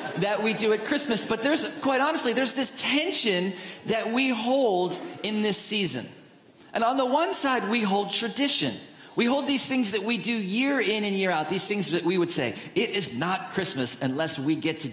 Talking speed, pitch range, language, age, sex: 210 wpm, 170-225 Hz, English, 40-59, male